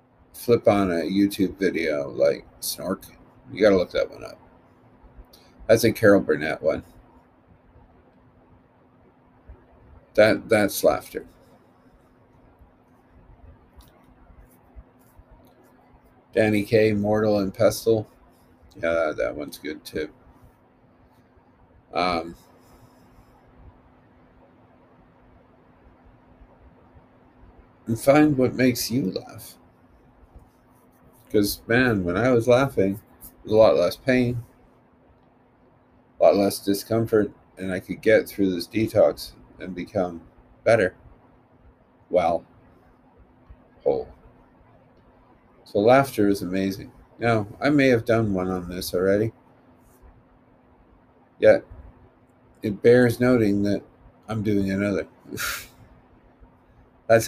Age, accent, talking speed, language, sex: 50-69, American, 95 wpm, English, male